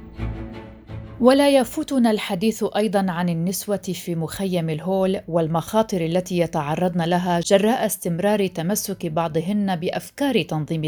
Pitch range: 165-205 Hz